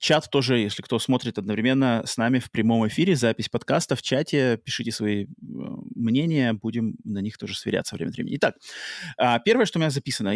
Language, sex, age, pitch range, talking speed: Russian, male, 30-49, 115-145 Hz, 185 wpm